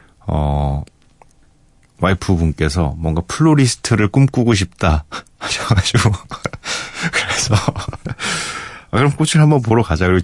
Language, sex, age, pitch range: Korean, male, 40-59, 85-120 Hz